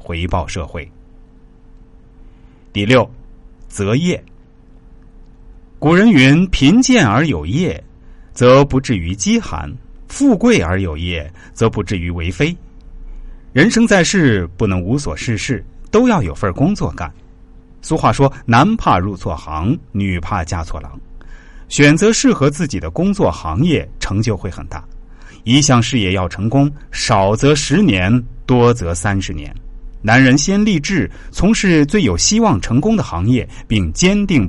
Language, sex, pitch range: Chinese, male, 85-140 Hz